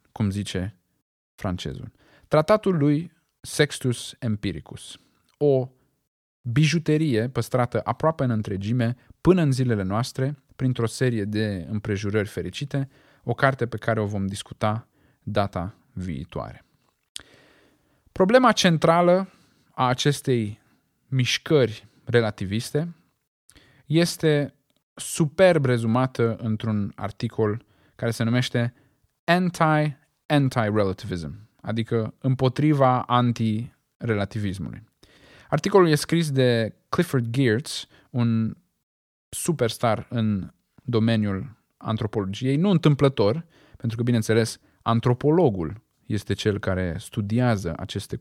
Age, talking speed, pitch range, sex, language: 20-39, 90 wpm, 105-135 Hz, male, Romanian